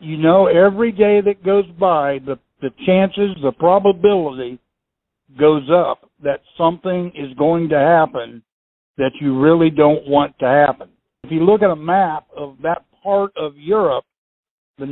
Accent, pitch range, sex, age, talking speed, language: American, 145-190 Hz, male, 60-79, 155 wpm, English